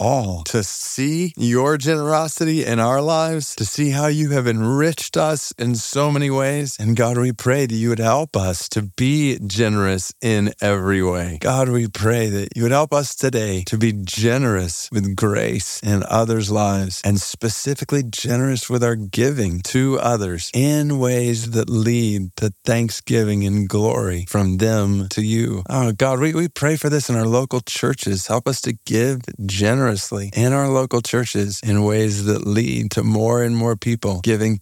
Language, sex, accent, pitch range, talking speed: English, male, American, 115-150 Hz, 175 wpm